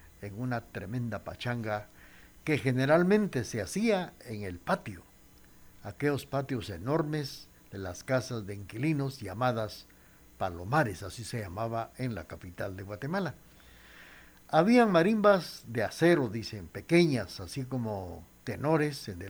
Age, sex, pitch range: 60-79, male, 100-145 Hz